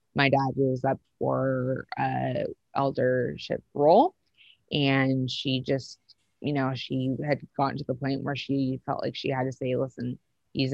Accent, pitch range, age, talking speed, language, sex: American, 130-140 Hz, 20-39, 160 wpm, English, female